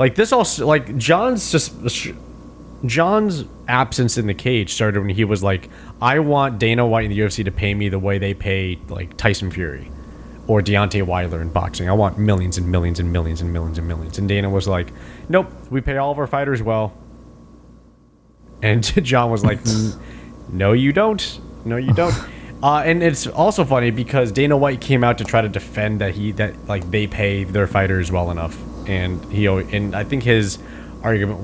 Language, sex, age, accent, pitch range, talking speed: English, male, 20-39, American, 95-120 Hz, 195 wpm